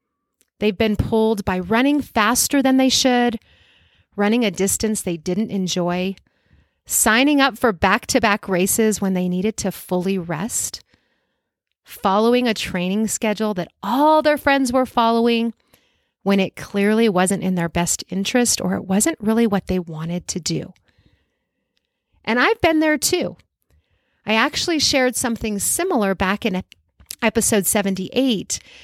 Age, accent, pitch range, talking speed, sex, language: 30-49, American, 185-235 Hz, 140 wpm, female, English